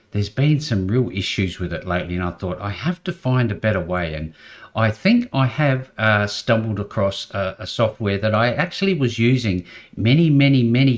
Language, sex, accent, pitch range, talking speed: English, male, Australian, 90-115 Hz, 200 wpm